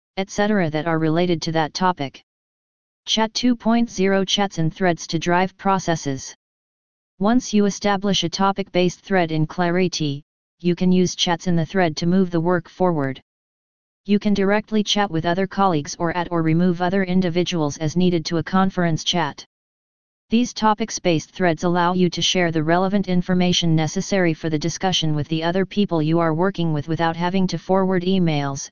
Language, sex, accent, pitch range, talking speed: English, female, American, 165-195 Hz, 170 wpm